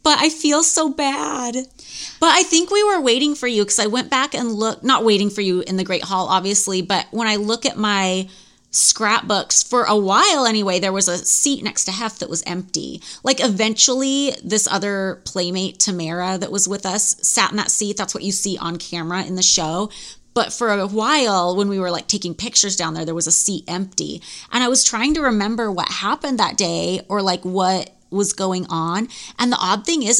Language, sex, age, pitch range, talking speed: English, female, 30-49, 185-230 Hz, 220 wpm